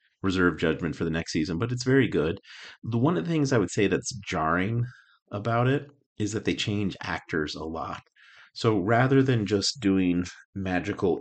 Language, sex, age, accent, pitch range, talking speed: English, male, 40-59, American, 85-105 Hz, 185 wpm